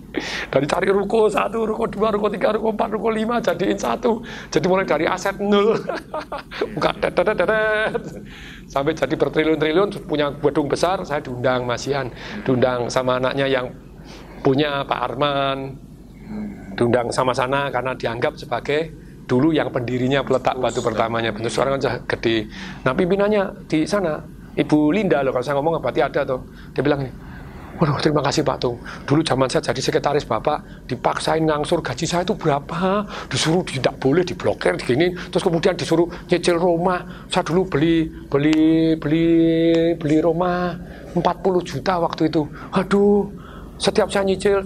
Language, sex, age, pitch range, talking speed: Indonesian, male, 40-59, 140-190 Hz, 145 wpm